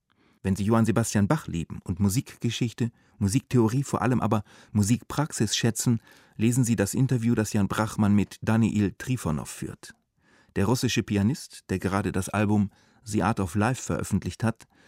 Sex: male